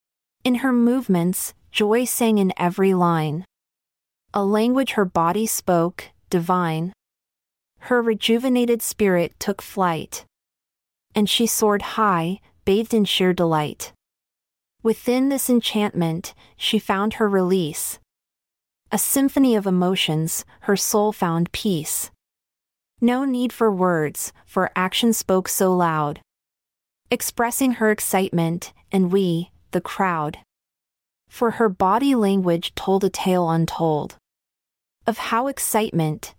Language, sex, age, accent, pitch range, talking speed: English, female, 30-49, American, 170-225 Hz, 115 wpm